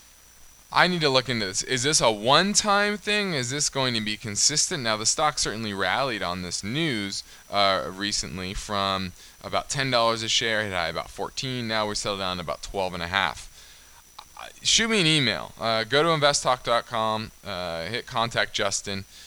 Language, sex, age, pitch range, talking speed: English, male, 20-39, 100-130 Hz, 175 wpm